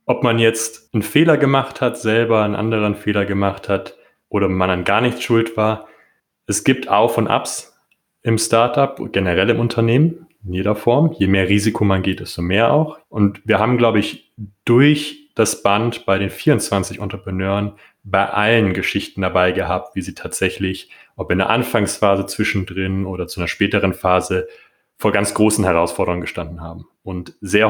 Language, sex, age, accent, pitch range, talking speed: German, male, 30-49, German, 95-115 Hz, 170 wpm